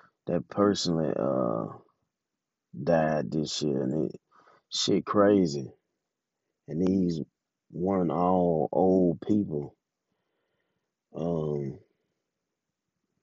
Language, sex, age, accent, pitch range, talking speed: English, male, 30-49, American, 95-125 Hz, 75 wpm